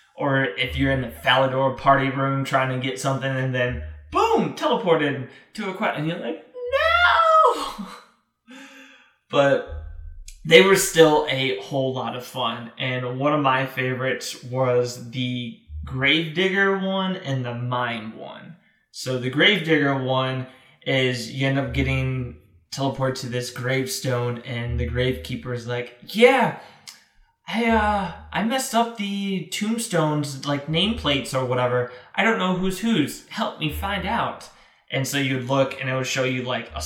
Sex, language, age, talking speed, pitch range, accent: male, English, 20-39, 155 wpm, 125-155 Hz, American